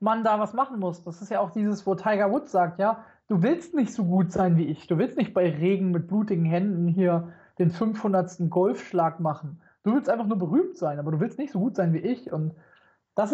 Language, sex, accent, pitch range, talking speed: German, male, German, 185-240 Hz, 240 wpm